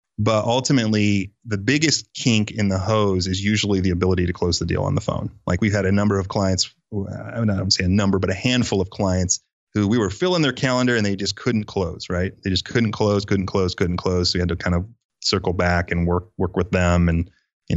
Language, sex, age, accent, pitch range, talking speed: English, male, 30-49, American, 90-110 Hz, 240 wpm